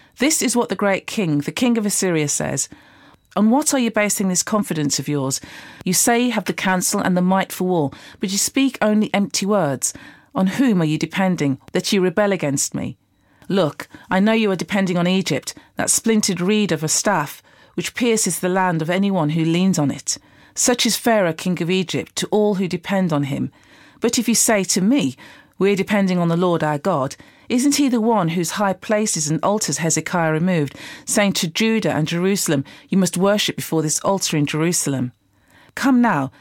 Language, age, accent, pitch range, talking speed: English, 40-59, British, 160-210 Hz, 205 wpm